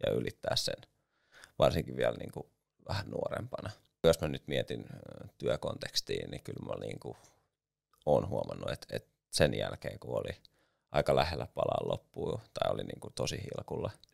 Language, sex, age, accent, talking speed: Finnish, male, 30-49, native, 155 wpm